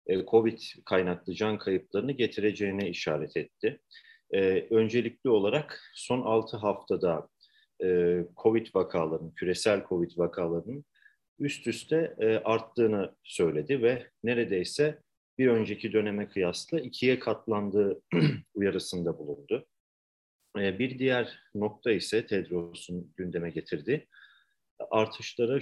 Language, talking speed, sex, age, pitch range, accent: Turkish, 100 wpm, male, 40-59, 95-125 Hz, native